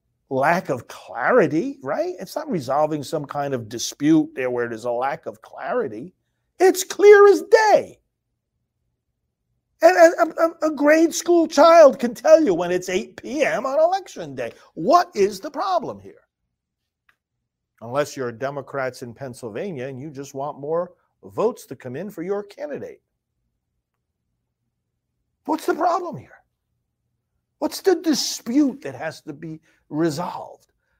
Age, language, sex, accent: 50-69, English, male, American